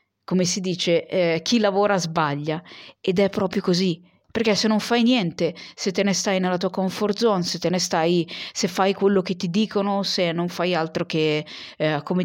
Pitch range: 160-195 Hz